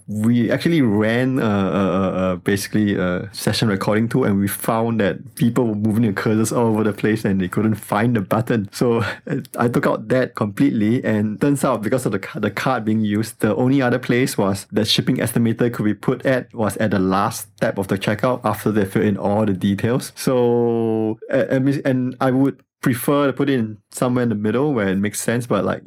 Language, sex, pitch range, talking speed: English, male, 100-125 Hz, 215 wpm